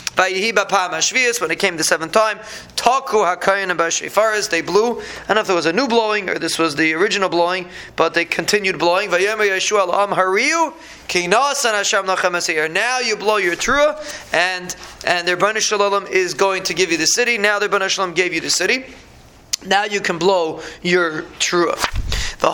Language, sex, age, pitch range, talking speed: English, male, 30-49, 180-220 Hz, 155 wpm